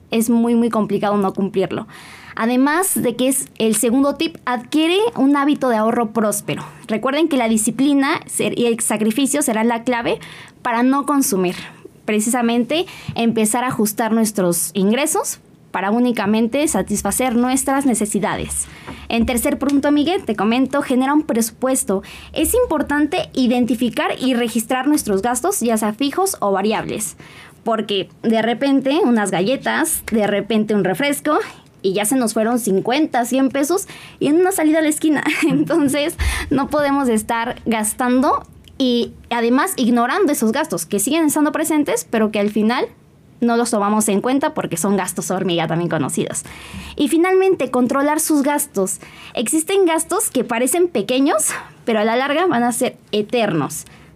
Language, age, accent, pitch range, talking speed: Spanish, 20-39, Mexican, 215-290 Hz, 150 wpm